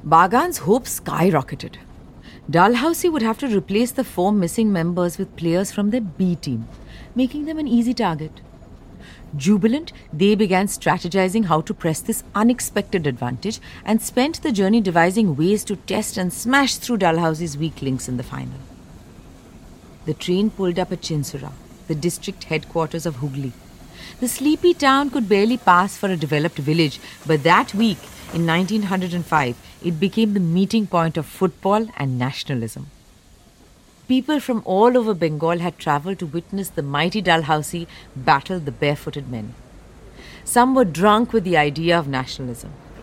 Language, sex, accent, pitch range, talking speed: English, female, Indian, 155-220 Hz, 150 wpm